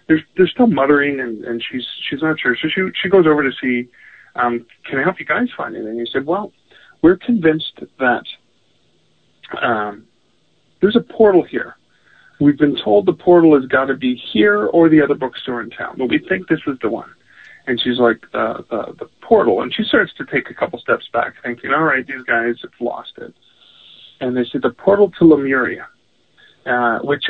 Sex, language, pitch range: male, English, 120-170 Hz